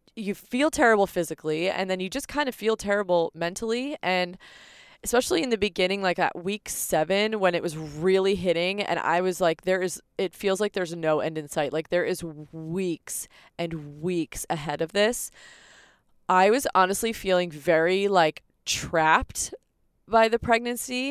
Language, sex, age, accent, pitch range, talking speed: English, female, 20-39, American, 165-205 Hz, 170 wpm